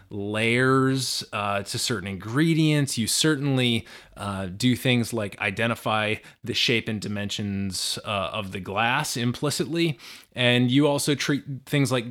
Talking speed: 135 wpm